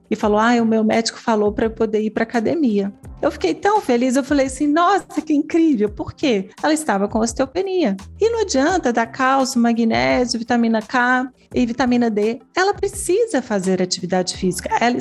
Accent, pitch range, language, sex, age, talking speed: Brazilian, 190-255 Hz, Portuguese, female, 40-59, 190 wpm